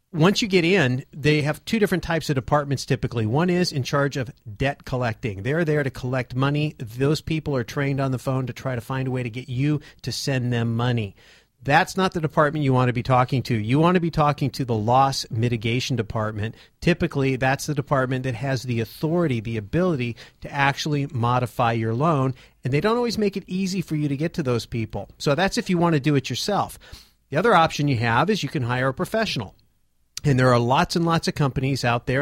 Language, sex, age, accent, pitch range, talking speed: English, male, 40-59, American, 120-150 Hz, 230 wpm